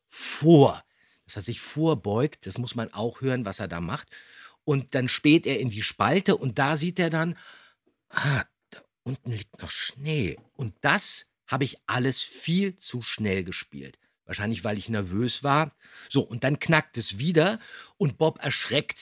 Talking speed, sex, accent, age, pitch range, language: 175 wpm, male, German, 50-69, 110-155 Hz, German